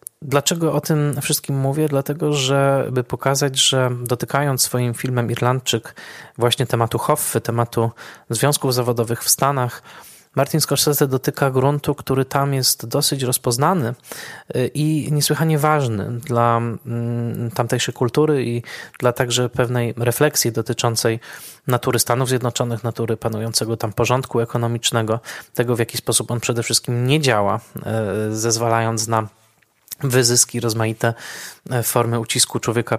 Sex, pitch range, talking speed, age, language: male, 115-135 Hz, 120 wpm, 20-39, Polish